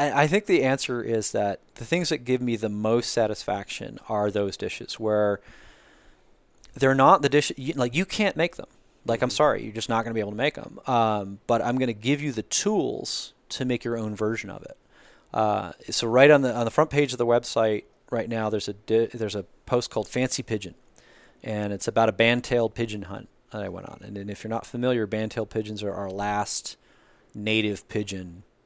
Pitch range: 105-125 Hz